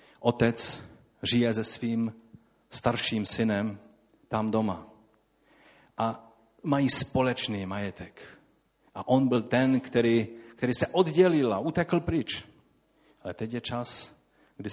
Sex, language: male, Czech